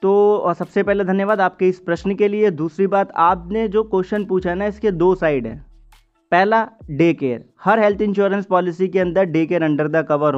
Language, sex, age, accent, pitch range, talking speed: Hindi, male, 20-39, native, 150-195 Hz, 200 wpm